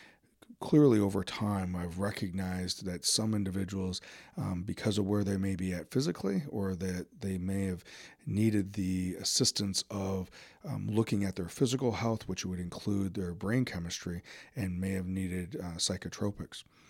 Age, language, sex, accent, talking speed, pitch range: 40-59, English, male, American, 155 wpm, 90-100 Hz